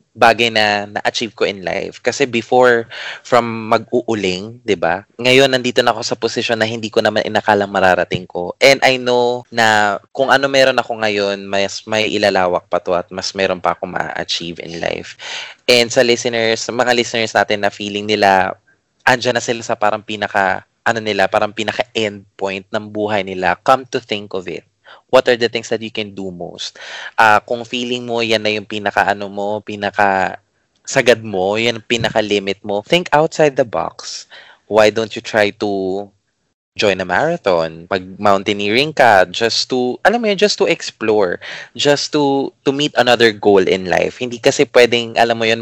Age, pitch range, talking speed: 20-39, 100-120 Hz, 180 wpm